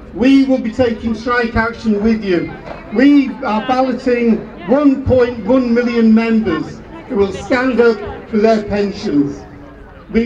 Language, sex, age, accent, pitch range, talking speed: English, male, 50-69, British, 215-255 Hz, 130 wpm